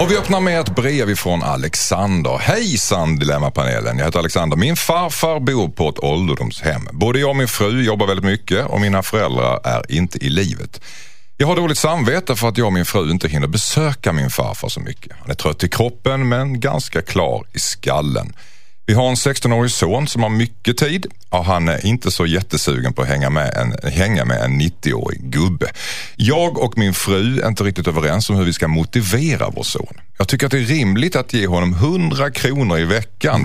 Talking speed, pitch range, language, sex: 205 wpm, 90-130 Hz, Swedish, male